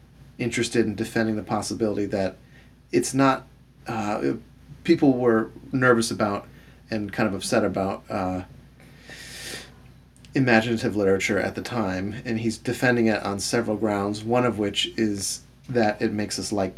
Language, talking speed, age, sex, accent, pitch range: English, 145 wpm, 30-49, male, American, 100-125 Hz